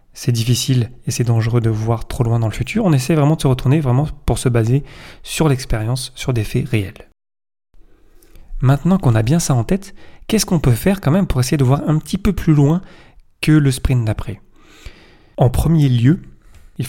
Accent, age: French, 30-49